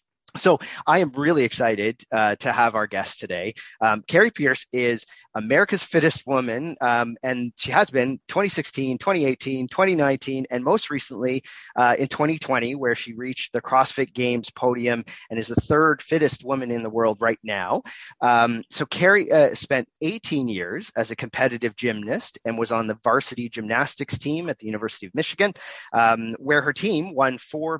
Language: English